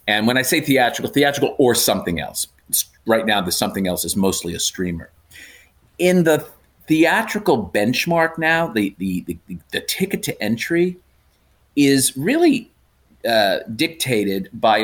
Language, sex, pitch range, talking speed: English, male, 105-150 Hz, 140 wpm